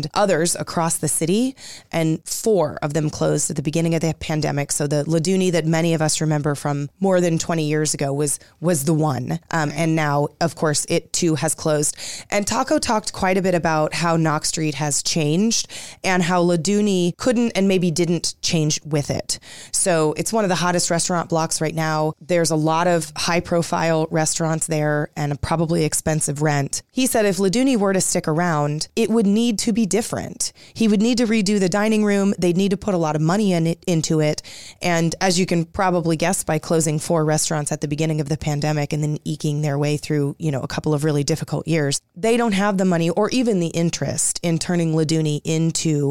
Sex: female